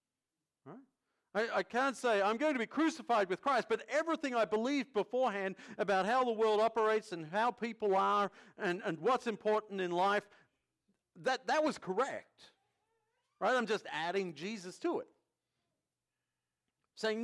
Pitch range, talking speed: 170-245 Hz, 150 wpm